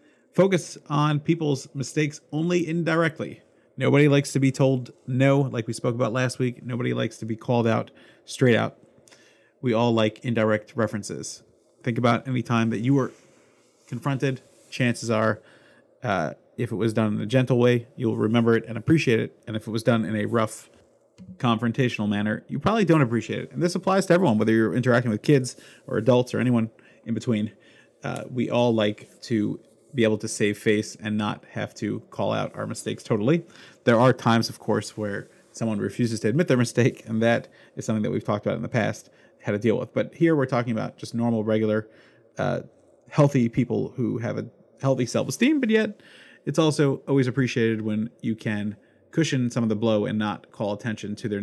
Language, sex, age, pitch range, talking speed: English, male, 30-49, 110-135 Hz, 195 wpm